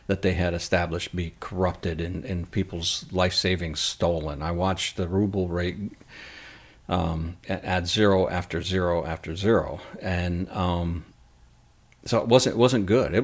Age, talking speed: 50-69, 150 wpm